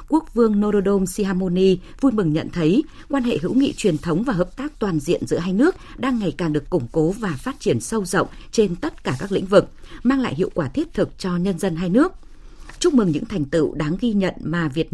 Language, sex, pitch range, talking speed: Vietnamese, female, 175-240 Hz, 240 wpm